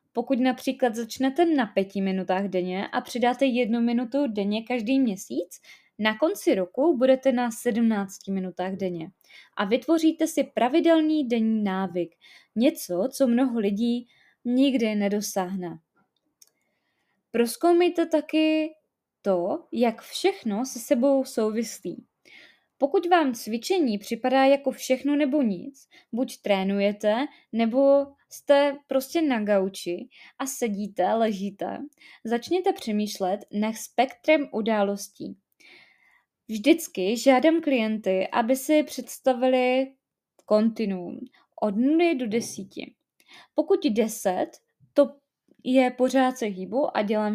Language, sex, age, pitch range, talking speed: Czech, female, 20-39, 210-275 Hz, 110 wpm